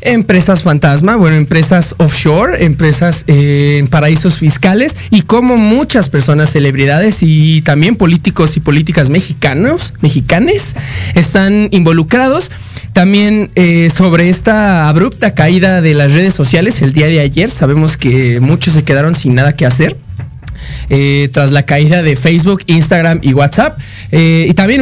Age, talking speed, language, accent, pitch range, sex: 20-39, 140 wpm, Spanish, Mexican, 145-190 Hz, male